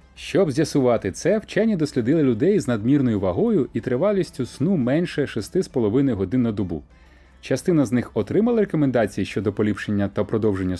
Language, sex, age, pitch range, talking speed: Ukrainian, male, 30-49, 100-165 Hz, 145 wpm